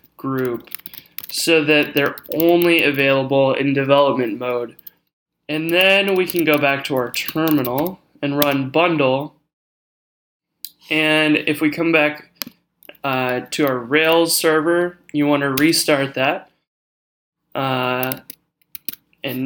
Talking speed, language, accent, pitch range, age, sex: 115 wpm, English, American, 135-160 Hz, 20-39, male